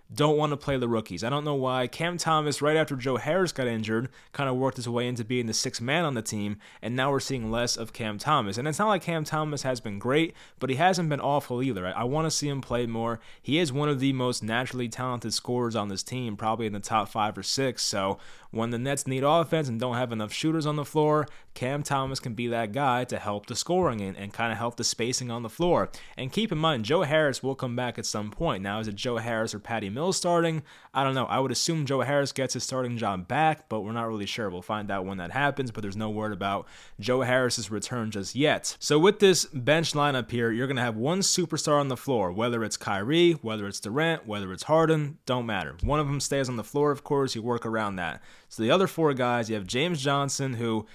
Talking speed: 260 wpm